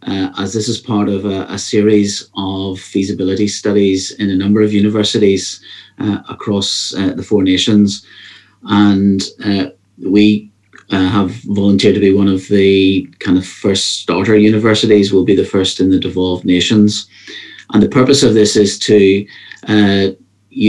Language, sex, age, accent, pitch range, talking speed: English, male, 40-59, British, 95-105 Hz, 160 wpm